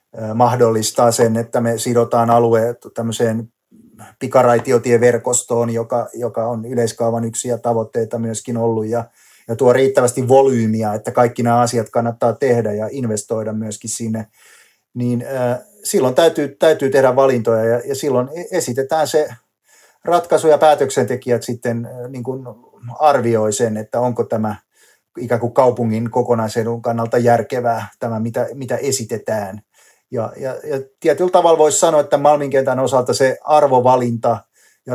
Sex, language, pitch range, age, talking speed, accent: male, Finnish, 115-135 Hz, 30-49, 130 wpm, native